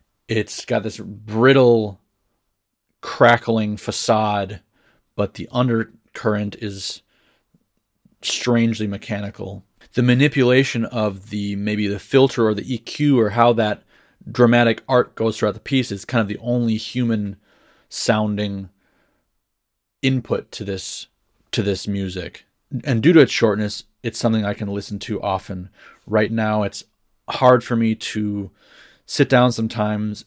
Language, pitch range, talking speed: English, 100-120 Hz, 130 wpm